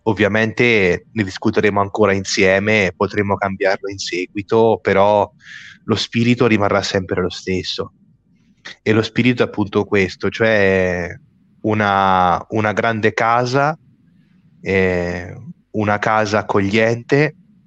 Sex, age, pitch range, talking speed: male, 20-39, 100-120 Hz, 105 wpm